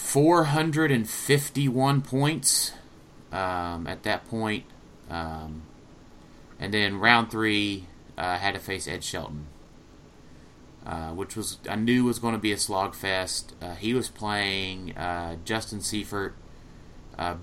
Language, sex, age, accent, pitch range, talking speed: English, male, 30-49, American, 85-110 Hz, 125 wpm